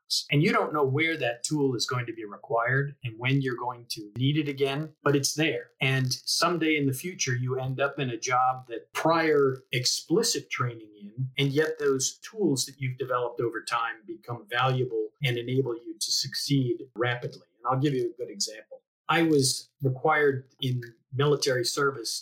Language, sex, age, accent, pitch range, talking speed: English, male, 50-69, American, 125-150 Hz, 185 wpm